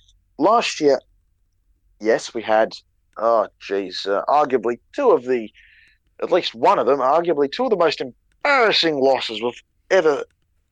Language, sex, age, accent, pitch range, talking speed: English, male, 20-39, Australian, 85-140 Hz, 145 wpm